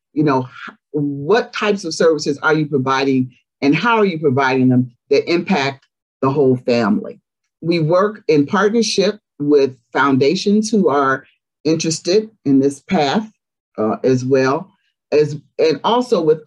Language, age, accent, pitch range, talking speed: English, 50-69, American, 130-175 Hz, 140 wpm